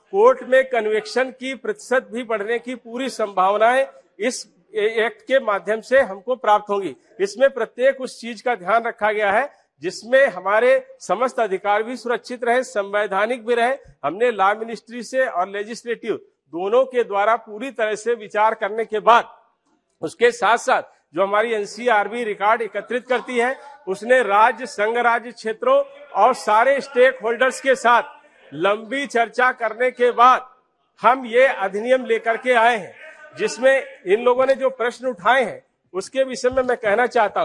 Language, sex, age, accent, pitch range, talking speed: English, male, 50-69, Indian, 215-260 Hz, 125 wpm